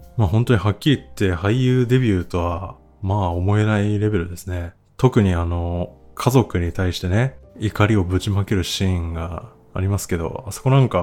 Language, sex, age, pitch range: Japanese, male, 20-39, 90-105 Hz